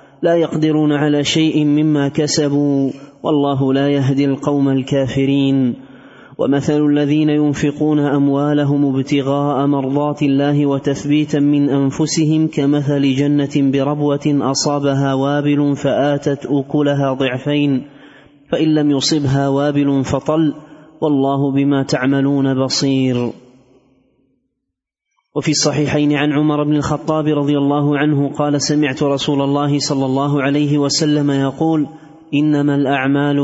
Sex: male